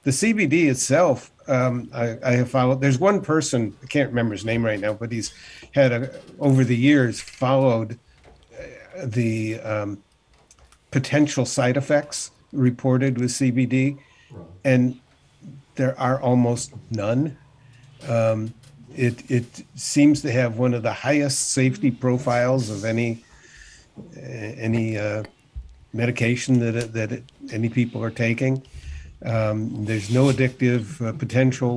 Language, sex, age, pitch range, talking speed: English, male, 50-69, 115-130 Hz, 130 wpm